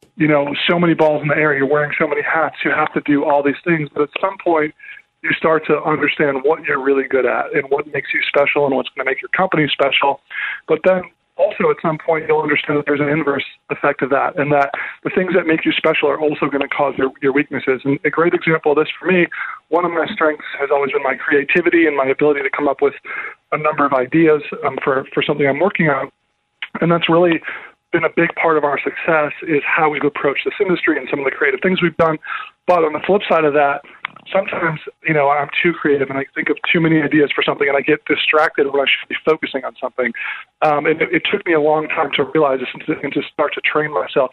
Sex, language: male, English